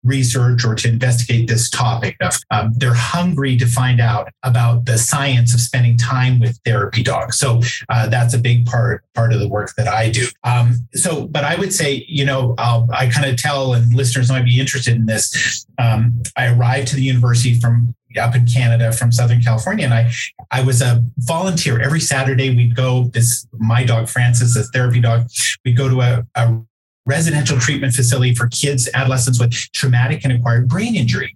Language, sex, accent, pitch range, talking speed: English, male, American, 120-135 Hz, 195 wpm